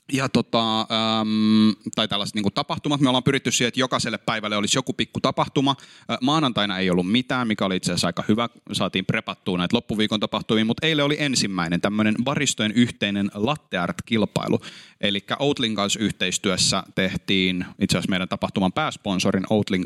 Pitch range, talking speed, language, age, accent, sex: 100-125 Hz, 160 wpm, Finnish, 30-49, native, male